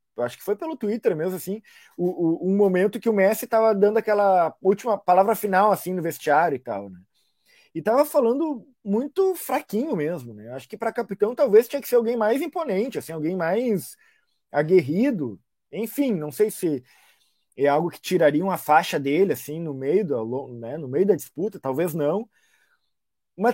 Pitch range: 150-235 Hz